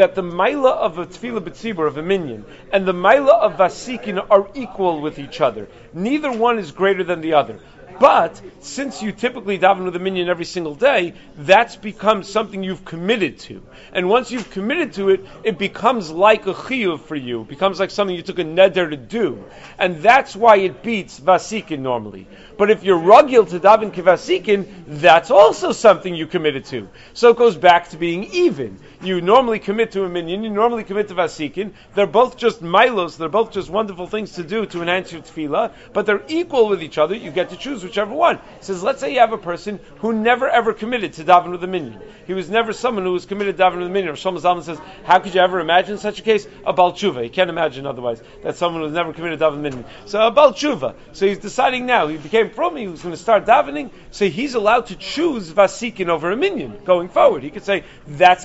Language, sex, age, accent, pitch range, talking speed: English, male, 40-59, American, 170-215 Hz, 225 wpm